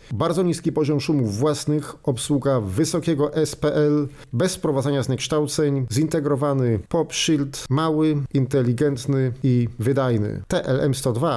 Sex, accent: male, native